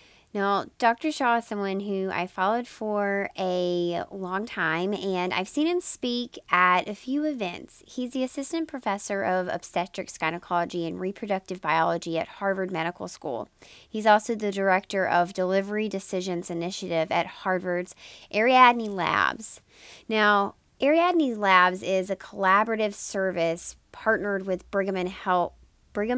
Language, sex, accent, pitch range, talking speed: English, female, American, 175-220 Hz, 130 wpm